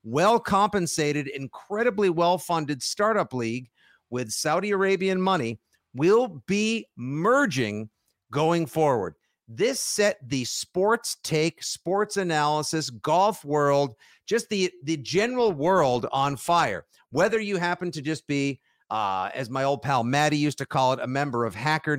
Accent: American